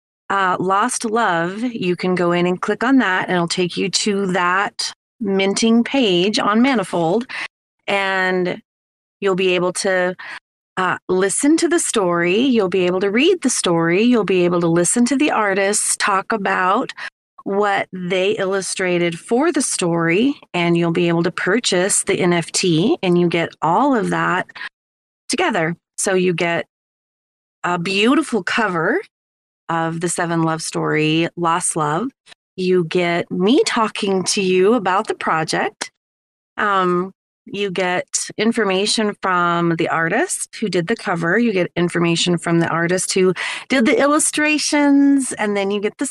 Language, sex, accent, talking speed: English, female, American, 150 wpm